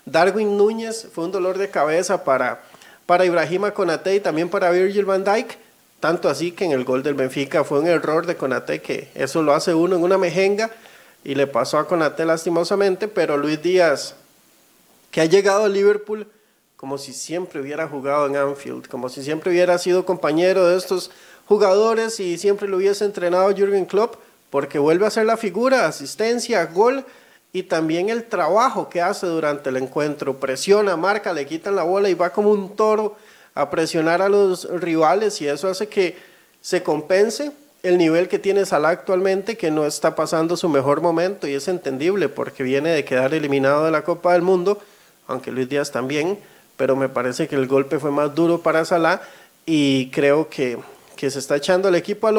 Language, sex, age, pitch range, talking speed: Spanish, male, 40-59, 155-200 Hz, 190 wpm